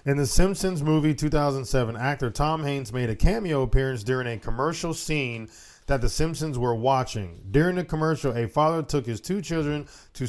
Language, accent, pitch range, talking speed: English, American, 120-150 Hz, 180 wpm